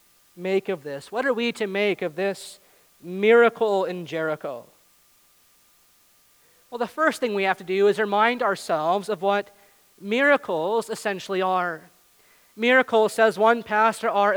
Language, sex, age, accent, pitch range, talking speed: English, male, 40-59, American, 195-235 Hz, 140 wpm